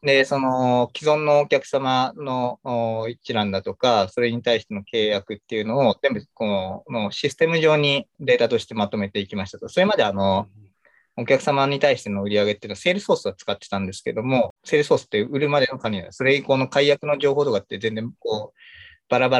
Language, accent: Japanese, native